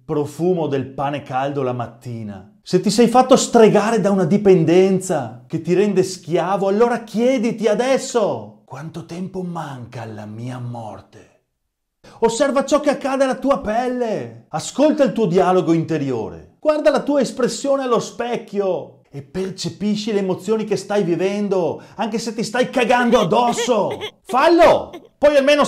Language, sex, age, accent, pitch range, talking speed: English, male, 30-49, Italian, 145-235 Hz, 145 wpm